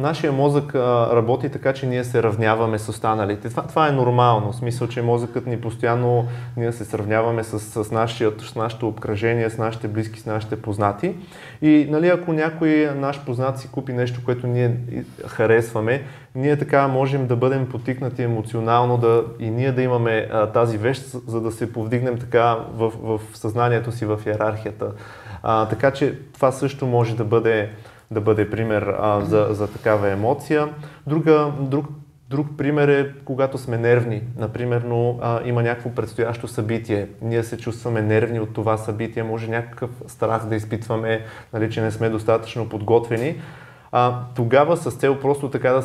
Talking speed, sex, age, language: 165 wpm, male, 20-39, Bulgarian